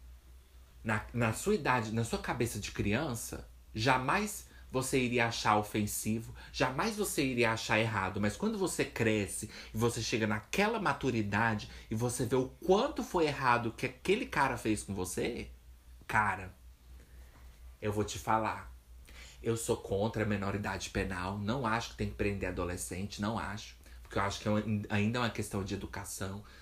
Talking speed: 160 wpm